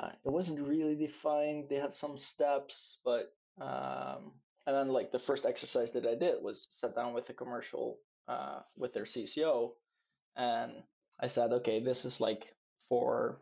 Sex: male